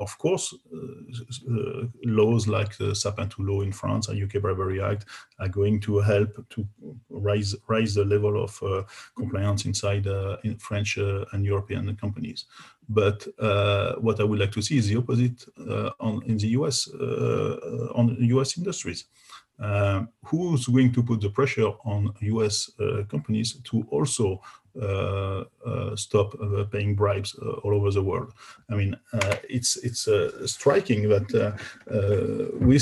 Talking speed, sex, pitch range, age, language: 165 wpm, male, 105-120 Hz, 40-59, English